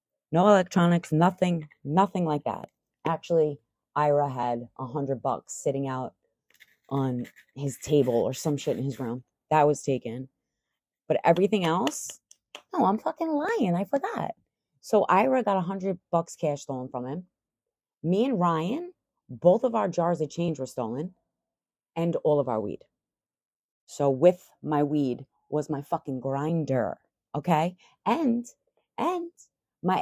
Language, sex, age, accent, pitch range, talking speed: English, female, 30-49, American, 135-180 Hz, 145 wpm